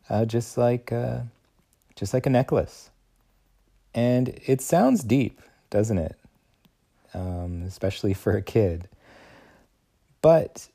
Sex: male